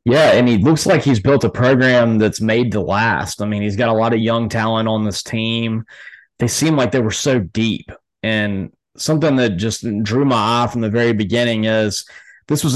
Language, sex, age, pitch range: English, male, 20-39, 110-125 Hz